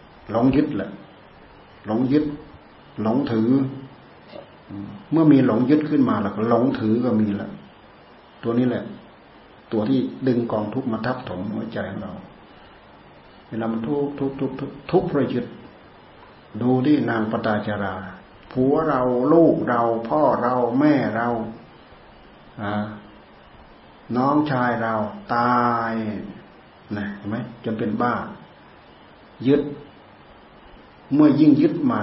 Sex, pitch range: male, 105-135 Hz